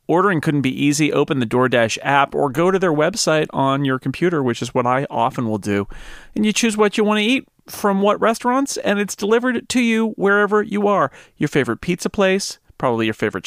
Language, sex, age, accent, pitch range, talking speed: English, male, 40-59, American, 115-165 Hz, 220 wpm